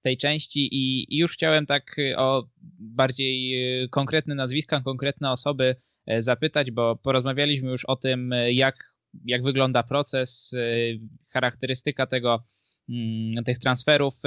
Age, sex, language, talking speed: 20-39, male, Polish, 110 wpm